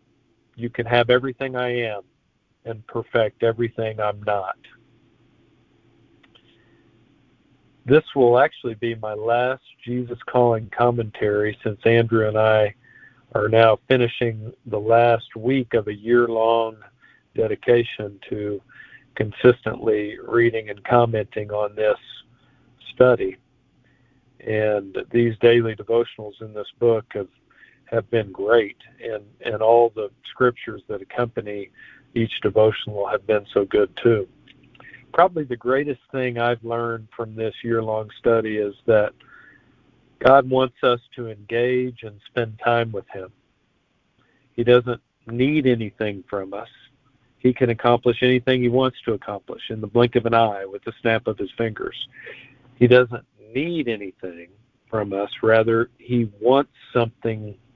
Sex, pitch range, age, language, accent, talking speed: male, 110-125 Hz, 50-69, English, American, 130 wpm